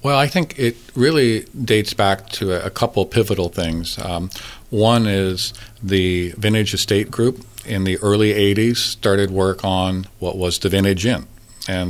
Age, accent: 50-69, American